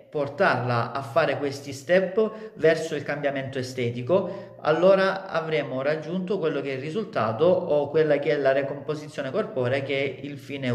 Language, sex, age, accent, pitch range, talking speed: Italian, male, 40-59, native, 135-165 Hz, 155 wpm